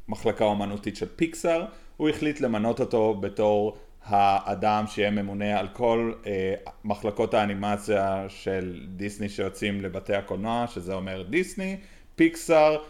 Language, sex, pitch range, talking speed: Hebrew, male, 100-125 Hz, 120 wpm